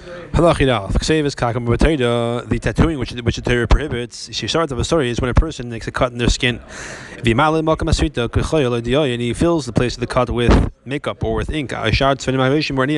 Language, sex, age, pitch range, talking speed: English, male, 20-39, 120-145 Hz, 170 wpm